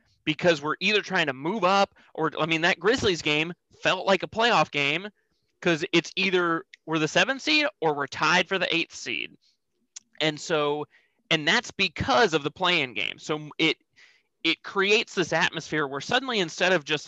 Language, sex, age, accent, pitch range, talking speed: English, male, 30-49, American, 130-180 Hz, 185 wpm